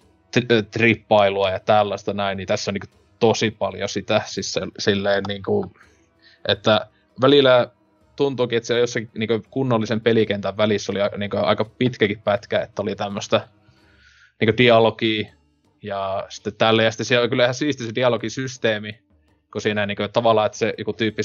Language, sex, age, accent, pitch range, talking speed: Finnish, male, 20-39, native, 105-120 Hz, 155 wpm